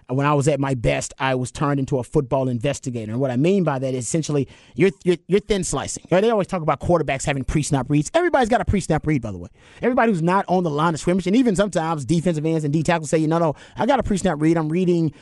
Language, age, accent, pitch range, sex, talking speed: English, 30-49, American, 140-175 Hz, male, 290 wpm